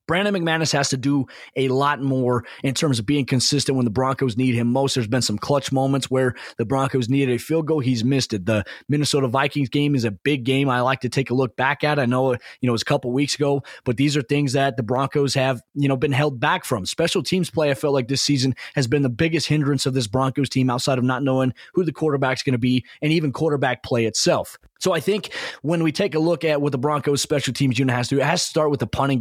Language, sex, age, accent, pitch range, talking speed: English, male, 20-39, American, 130-150 Hz, 265 wpm